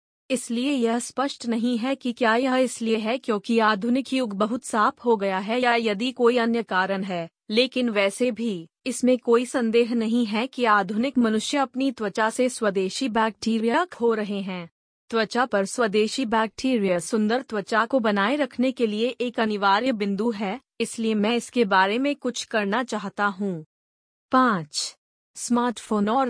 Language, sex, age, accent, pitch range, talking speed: Hindi, female, 20-39, native, 215-250 Hz, 155 wpm